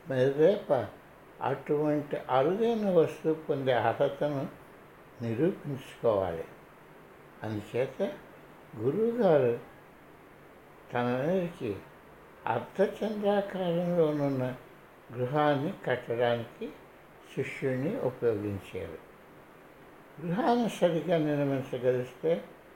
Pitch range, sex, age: 125-180 Hz, male, 60-79